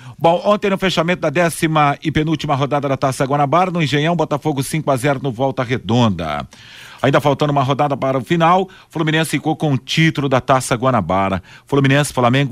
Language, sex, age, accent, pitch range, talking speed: Portuguese, male, 40-59, Brazilian, 120-145 Hz, 175 wpm